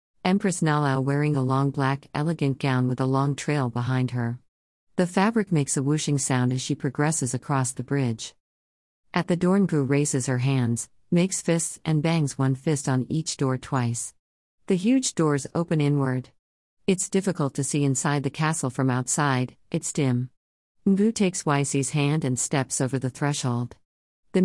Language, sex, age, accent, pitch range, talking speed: English, female, 50-69, American, 130-165 Hz, 170 wpm